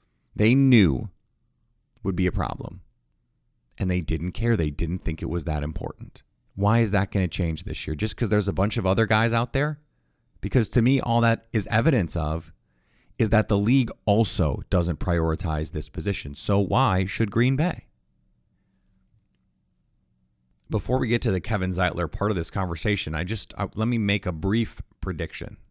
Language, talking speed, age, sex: English, 180 wpm, 30-49, male